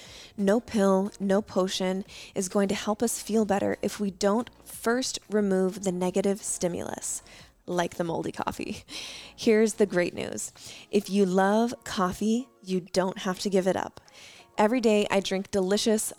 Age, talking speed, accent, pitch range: 20-39, 160 wpm, American, 185-215 Hz